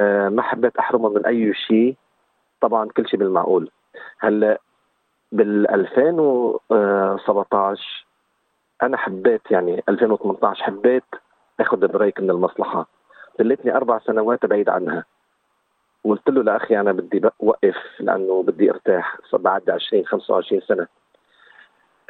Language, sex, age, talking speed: Arabic, male, 40-59, 110 wpm